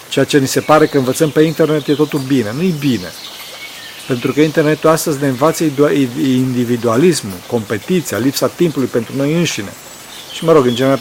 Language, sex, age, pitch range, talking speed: Romanian, male, 50-69, 125-155 Hz, 175 wpm